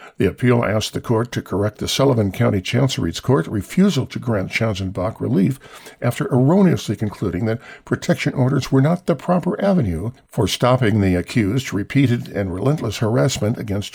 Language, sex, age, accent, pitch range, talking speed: English, male, 60-79, American, 100-135 Hz, 160 wpm